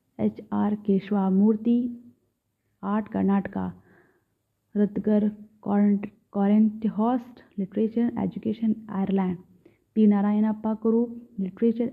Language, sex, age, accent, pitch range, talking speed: Hindi, female, 30-49, native, 195-230 Hz, 80 wpm